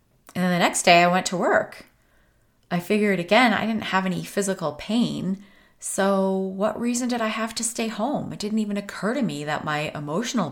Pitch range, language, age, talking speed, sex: 160-205 Hz, English, 30-49, 205 wpm, female